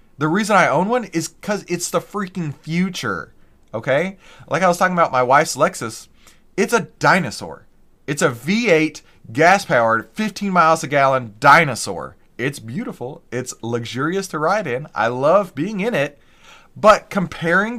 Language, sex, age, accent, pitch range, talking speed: English, male, 30-49, American, 130-190 Hz, 160 wpm